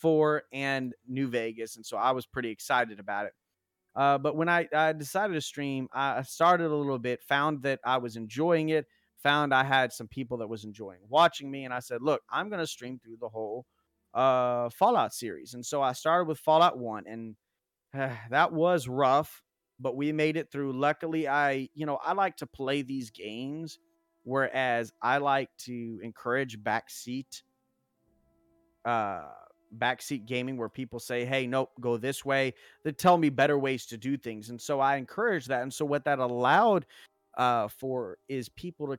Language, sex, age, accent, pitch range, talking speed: English, male, 30-49, American, 120-150 Hz, 185 wpm